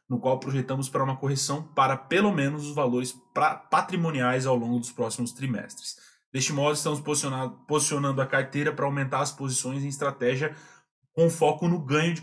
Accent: Brazilian